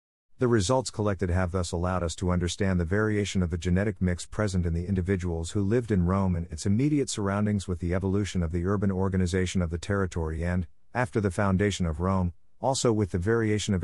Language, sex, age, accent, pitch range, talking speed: English, male, 50-69, American, 85-110 Hz, 210 wpm